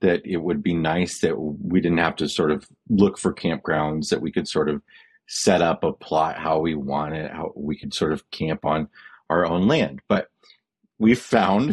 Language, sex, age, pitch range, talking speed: English, male, 30-49, 90-115 Hz, 210 wpm